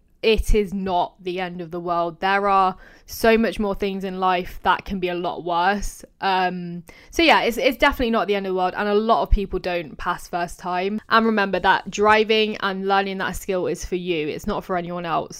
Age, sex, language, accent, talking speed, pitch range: 10-29, female, English, British, 230 wpm, 180-210 Hz